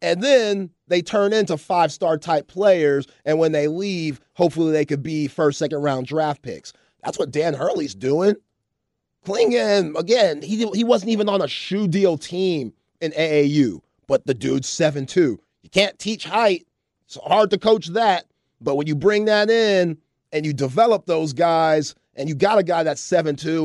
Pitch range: 140-165 Hz